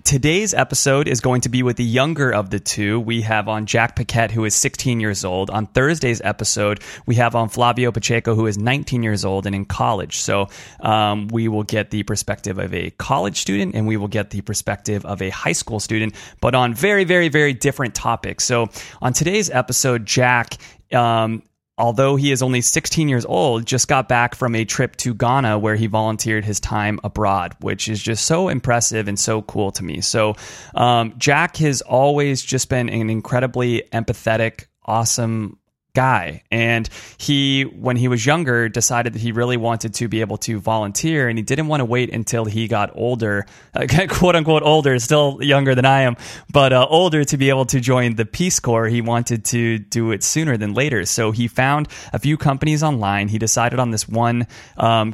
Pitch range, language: 105-130 Hz, English